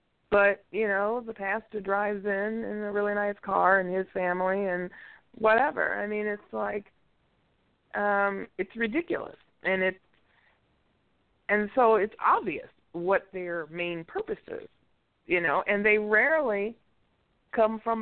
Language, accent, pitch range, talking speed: English, American, 185-225 Hz, 135 wpm